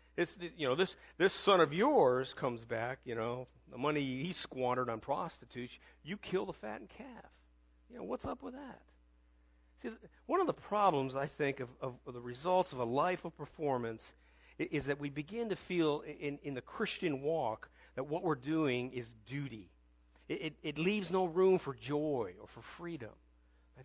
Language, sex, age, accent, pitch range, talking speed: English, male, 50-69, American, 120-175 Hz, 185 wpm